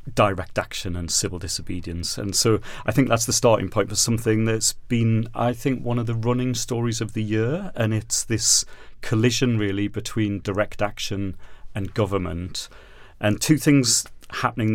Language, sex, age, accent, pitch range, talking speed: English, male, 30-49, British, 100-115 Hz, 165 wpm